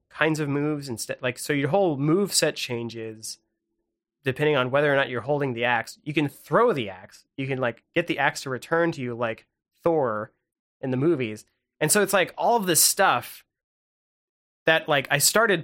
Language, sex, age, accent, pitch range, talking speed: English, male, 30-49, American, 125-165 Hz, 200 wpm